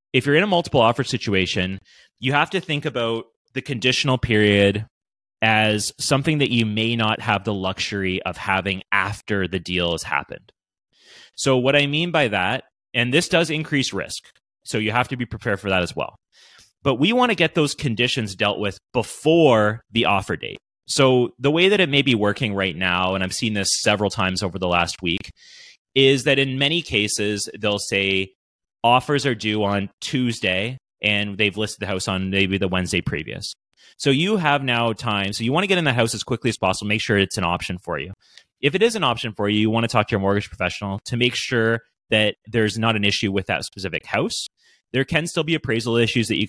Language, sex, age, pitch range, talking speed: English, male, 30-49, 95-130 Hz, 215 wpm